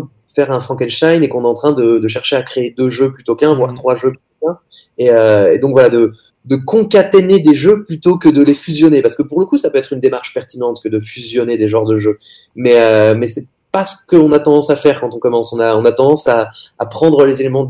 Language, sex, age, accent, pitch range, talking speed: French, male, 20-39, French, 115-145 Hz, 270 wpm